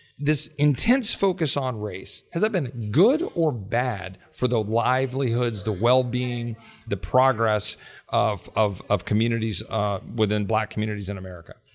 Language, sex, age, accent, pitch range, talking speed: English, male, 40-59, American, 105-135 Hz, 145 wpm